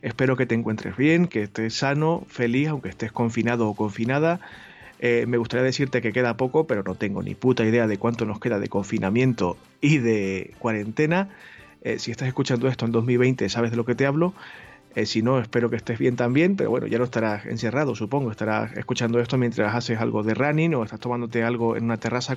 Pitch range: 115-135 Hz